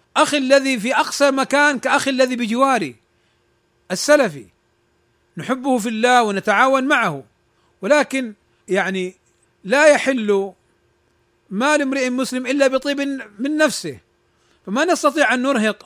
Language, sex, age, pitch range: Arabic, male, 40-59, 205-265 Hz